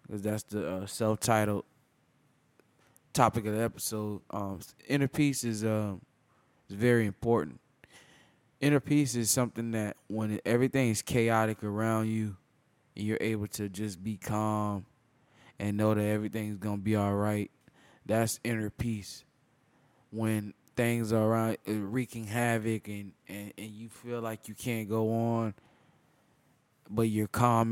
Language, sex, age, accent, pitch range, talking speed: English, male, 20-39, American, 110-120 Hz, 140 wpm